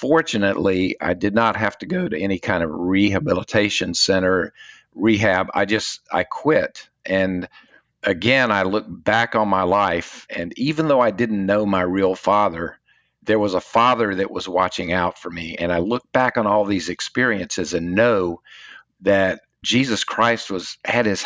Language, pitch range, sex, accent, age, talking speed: English, 95-105 Hz, male, American, 50-69, 170 wpm